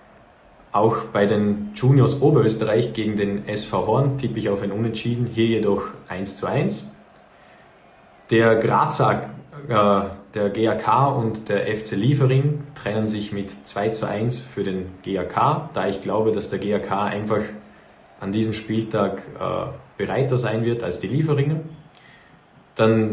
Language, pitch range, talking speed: German, 100-115 Hz, 145 wpm